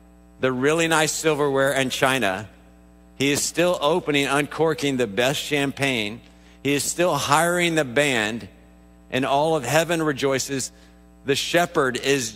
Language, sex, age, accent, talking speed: English, male, 50-69, American, 135 wpm